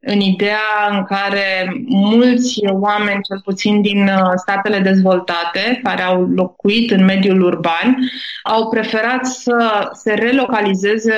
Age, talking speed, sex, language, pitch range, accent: 20-39, 120 wpm, female, Romanian, 200-235 Hz, native